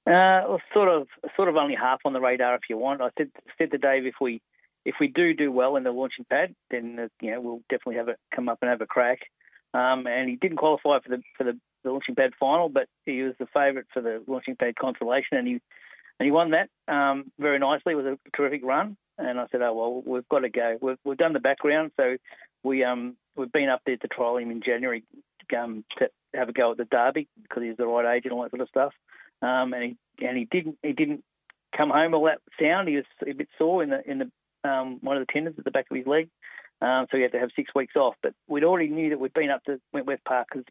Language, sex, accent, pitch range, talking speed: English, male, Australian, 125-145 Hz, 265 wpm